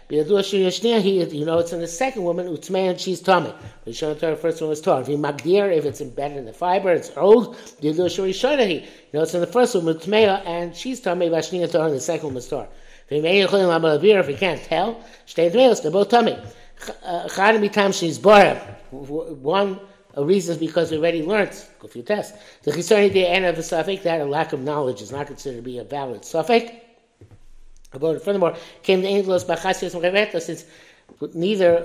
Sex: male